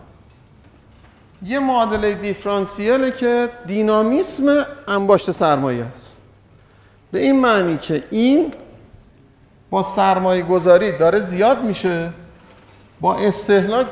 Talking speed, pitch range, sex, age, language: 90 wpm, 150-225 Hz, male, 50-69, Persian